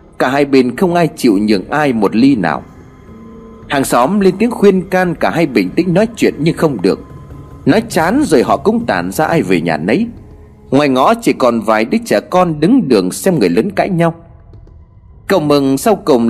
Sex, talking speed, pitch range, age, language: male, 205 wpm, 140-220 Hz, 30-49, Vietnamese